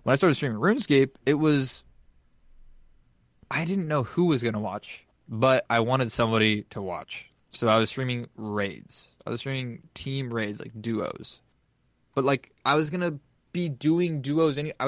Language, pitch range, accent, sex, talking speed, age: English, 115-150 Hz, American, male, 175 wpm, 20-39